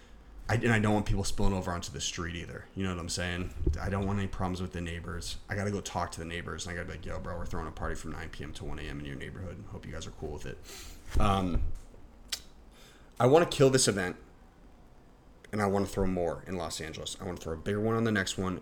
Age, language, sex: 30-49, English, male